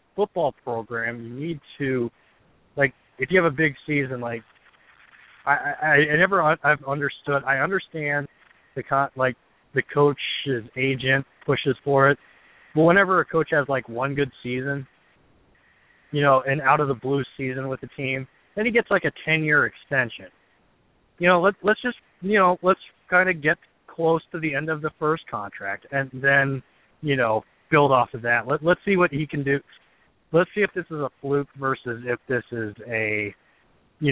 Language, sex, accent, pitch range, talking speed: English, male, American, 125-150 Hz, 185 wpm